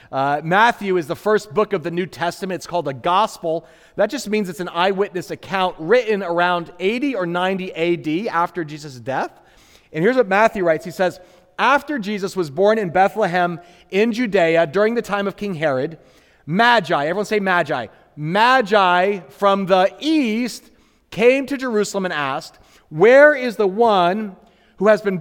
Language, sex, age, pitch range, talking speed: English, male, 30-49, 175-230 Hz, 170 wpm